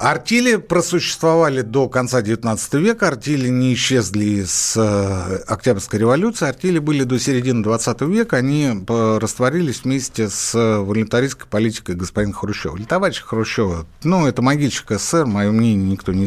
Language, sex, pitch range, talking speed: Russian, male, 110-160 Hz, 135 wpm